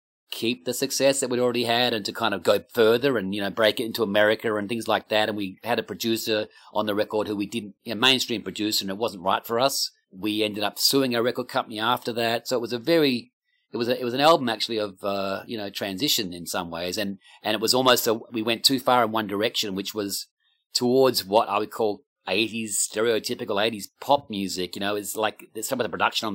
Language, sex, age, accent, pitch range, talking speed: English, male, 40-59, Australian, 95-125 Hz, 250 wpm